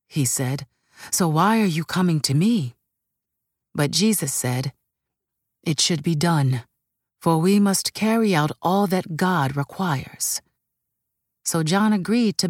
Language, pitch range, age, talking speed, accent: English, 140-195 Hz, 40-59, 140 wpm, American